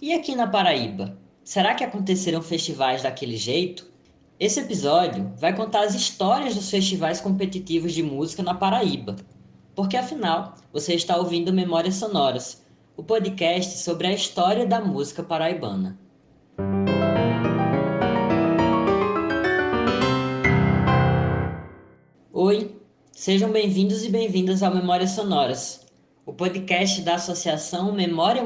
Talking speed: 110 wpm